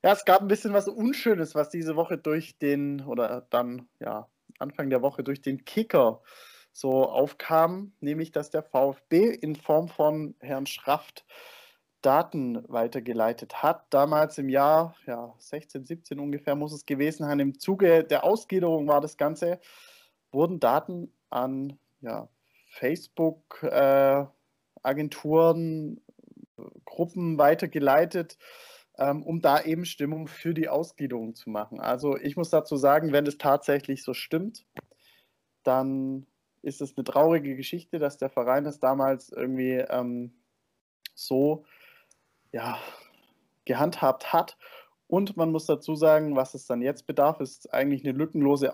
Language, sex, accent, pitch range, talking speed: German, male, German, 135-165 Hz, 135 wpm